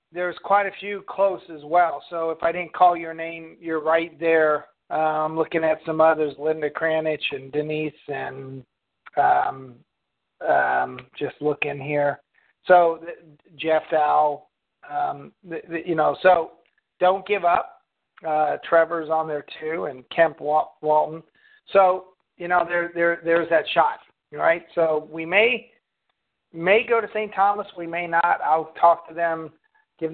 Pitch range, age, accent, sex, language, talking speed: 160-185 Hz, 40-59, American, male, English, 160 wpm